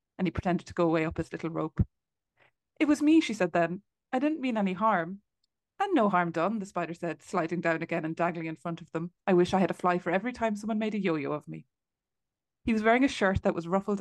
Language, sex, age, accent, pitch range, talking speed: English, female, 20-39, Irish, 165-205 Hz, 255 wpm